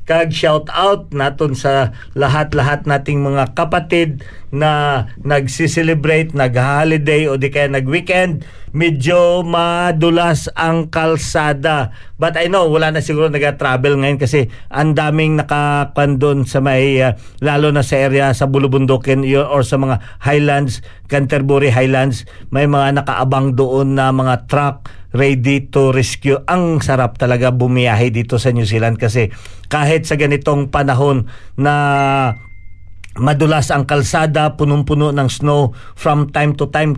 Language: Filipino